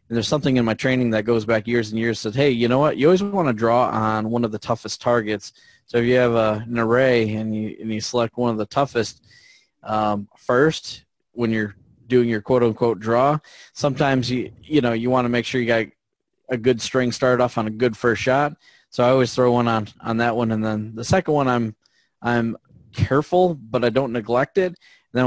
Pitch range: 110-125 Hz